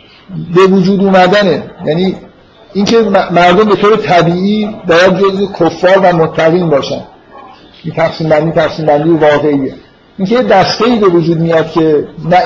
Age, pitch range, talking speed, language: 50-69, 155-185 Hz, 140 wpm, Persian